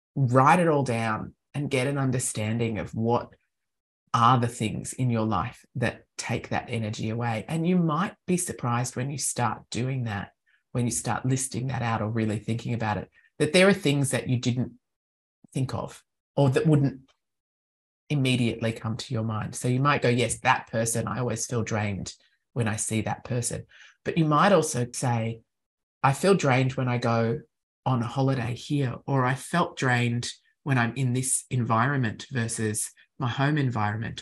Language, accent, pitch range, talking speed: English, Australian, 115-135 Hz, 180 wpm